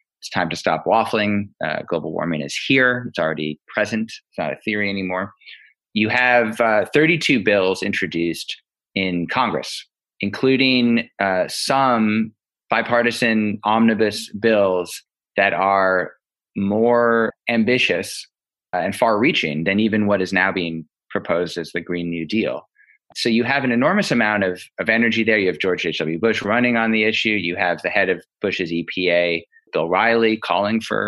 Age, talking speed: 20-39, 155 wpm